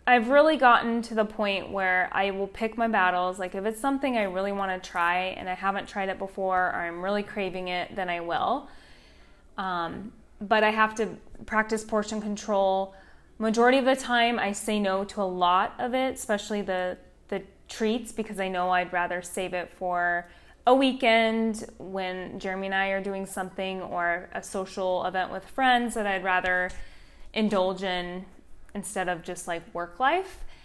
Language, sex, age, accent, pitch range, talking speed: English, female, 20-39, American, 185-225 Hz, 180 wpm